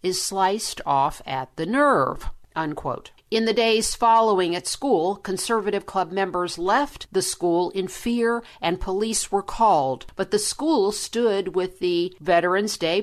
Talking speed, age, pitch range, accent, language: 150 wpm, 50-69, 165-225 Hz, American, English